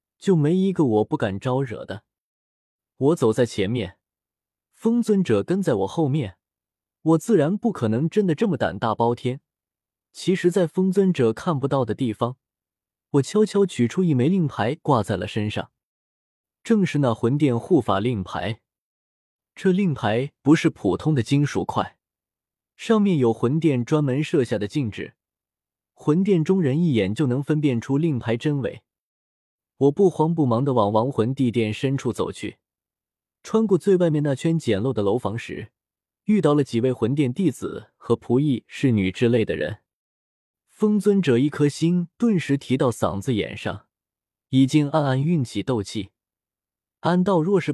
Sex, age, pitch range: male, 20-39, 110-165 Hz